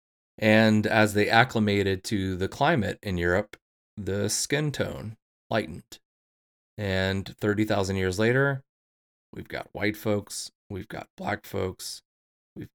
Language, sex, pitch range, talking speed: English, male, 90-110 Hz, 120 wpm